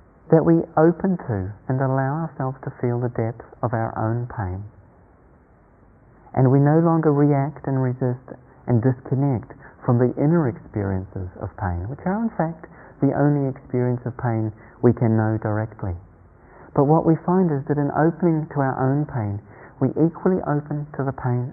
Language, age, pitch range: English, 40-59, 120-150 Hz